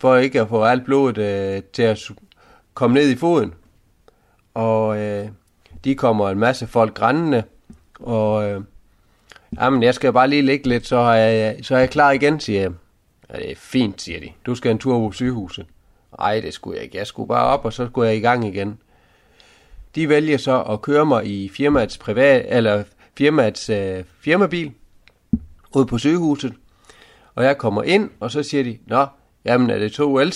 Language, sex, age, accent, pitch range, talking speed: Danish, male, 30-49, native, 100-130 Hz, 185 wpm